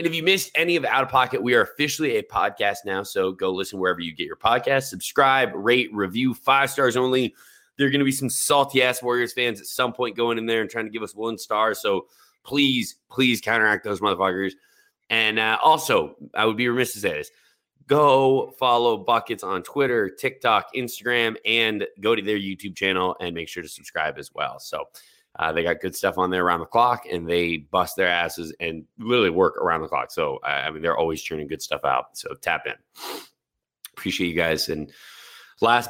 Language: English